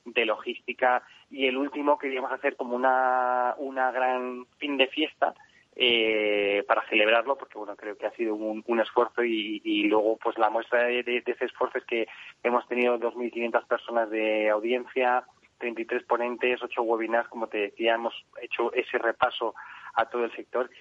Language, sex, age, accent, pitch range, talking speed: Spanish, male, 20-39, Spanish, 110-125 Hz, 175 wpm